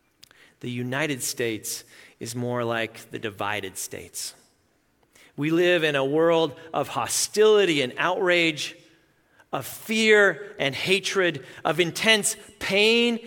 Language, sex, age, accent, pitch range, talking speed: English, male, 40-59, American, 150-215 Hz, 115 wpm